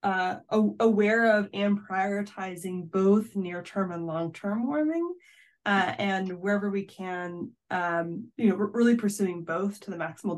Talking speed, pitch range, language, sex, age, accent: 145 wpm, 180-220 Hz, English, female, 20-39, American